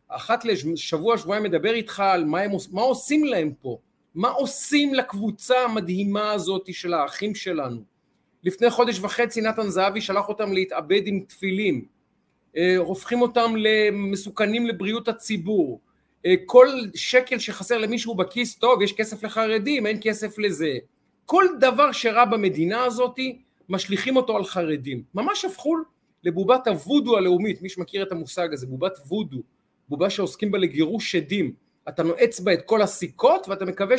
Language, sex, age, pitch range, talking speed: Hebrew, male, 40-59, 180-235 Hz, 145 wpm